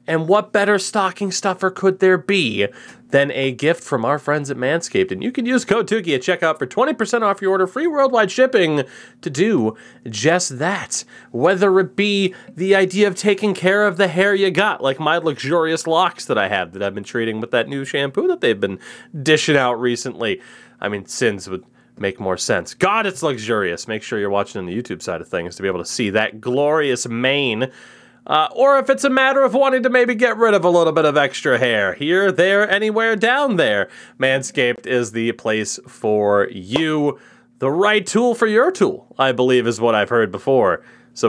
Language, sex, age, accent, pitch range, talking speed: English, male, 30-49, American, 125-205 Hz, 205 wpm